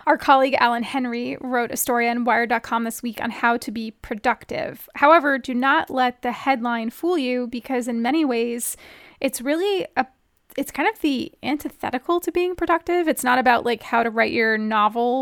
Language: English